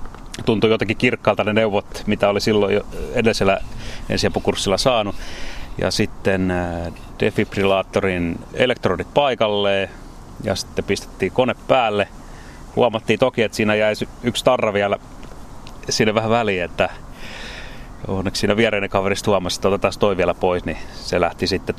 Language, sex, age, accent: Finnish, male, 30-49, native